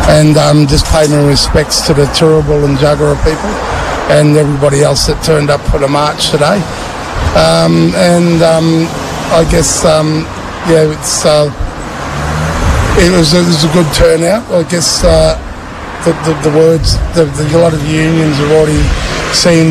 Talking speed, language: 165 wpm, English